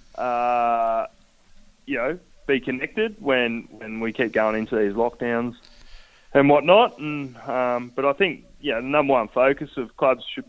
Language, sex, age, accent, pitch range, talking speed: English, male, 20-39, Australian, 105-125 Hz, 160 wpm